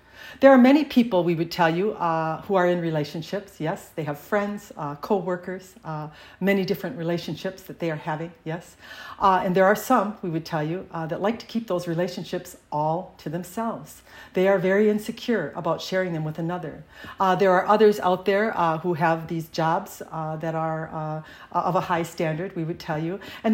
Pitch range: 165-210 Hz